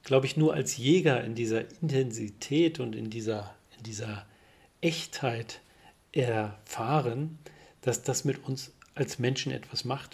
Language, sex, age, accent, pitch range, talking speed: German, male, 40-59, German, 115-140 Hz, 130 wpm